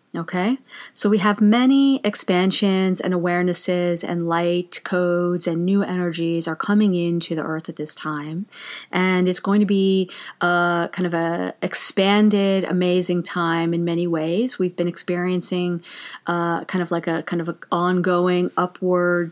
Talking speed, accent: 155 wpm, American